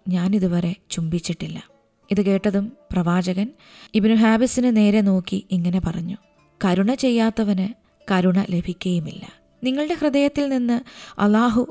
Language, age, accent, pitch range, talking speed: Malayalam, 20-39, native, 190-240 Hz, 100 wpm